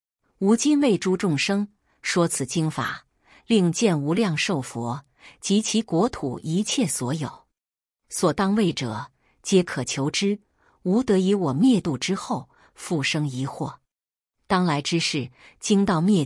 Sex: female